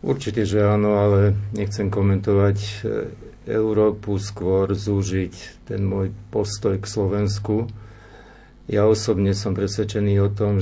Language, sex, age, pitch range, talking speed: Slovak, male, 50-69, 100-110 Hz, 115 wpm